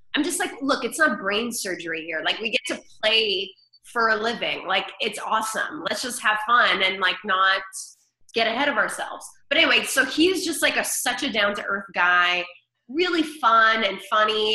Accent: American